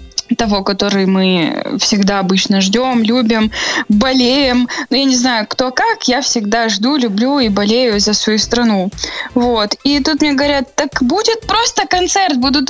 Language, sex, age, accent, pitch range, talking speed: Russian, female, 20-39, native, 220-285 Hz, 155 wpm